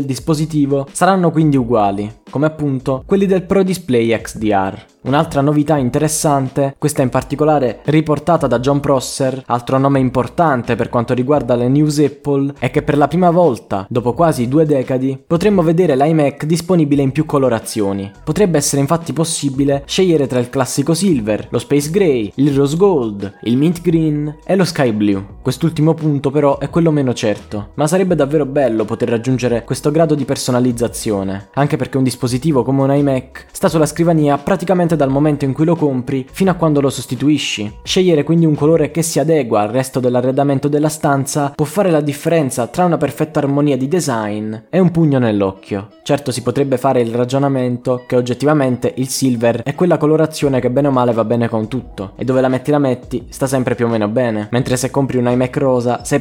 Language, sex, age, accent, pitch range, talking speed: Italian, male, 20-39, native, 125-155 Hz, 185 wpm